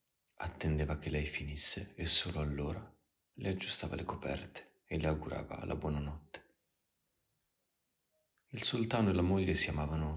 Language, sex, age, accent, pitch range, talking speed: Italian, male, 30-49, native, 75-85 Hz, 135 wpm